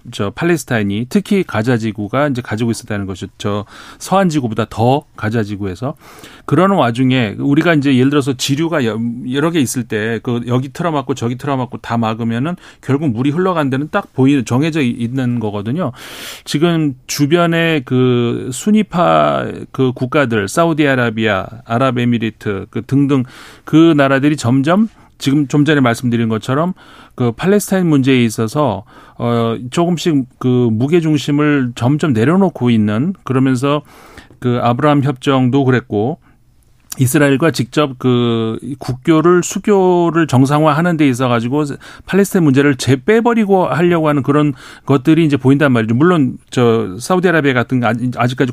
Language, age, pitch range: Korean, 40-59, 120-155 Hz